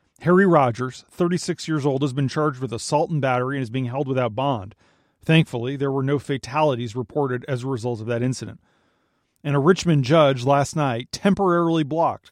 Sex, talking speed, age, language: male, 185 wpm, 40-59, English